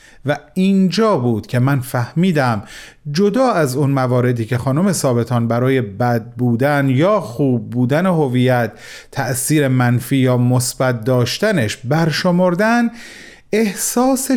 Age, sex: 40-59, male